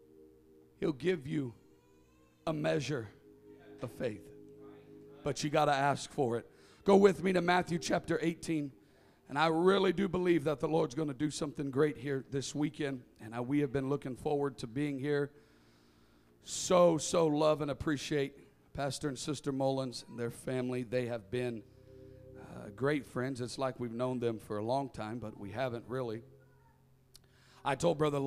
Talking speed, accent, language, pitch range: 170 wpm, American, English, 120-150 Hz